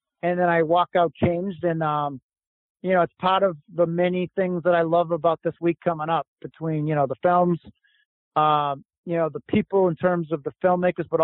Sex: male